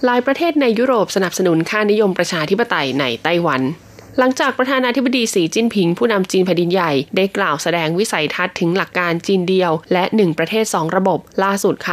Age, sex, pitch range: 20-39, female, 170-220 Hz